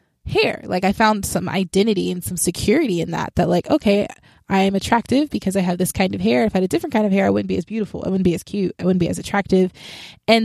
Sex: female